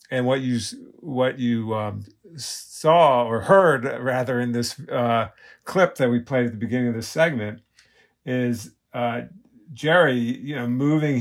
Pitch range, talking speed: 115-135 Hz, 155 wpm